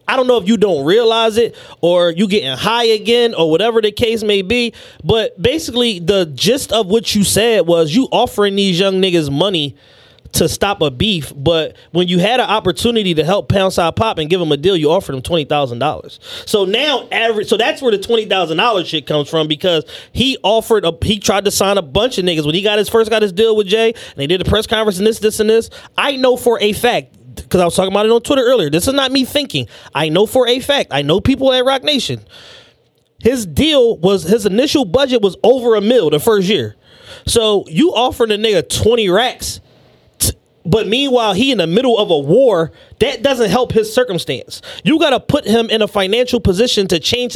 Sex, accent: male, American